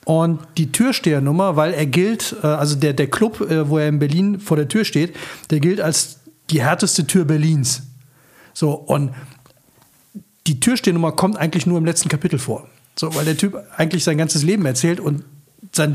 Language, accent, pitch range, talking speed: German, German, 150-185 Hz, 175 wpm